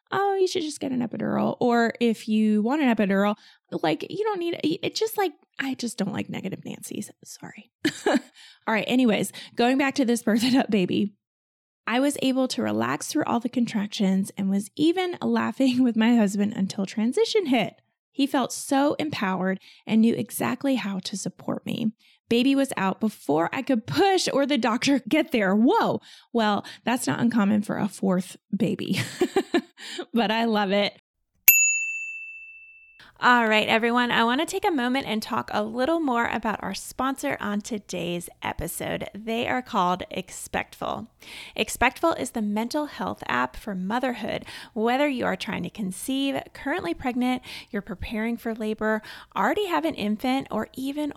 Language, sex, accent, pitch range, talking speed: English, female, American, 210-275 Hz, 165 wpm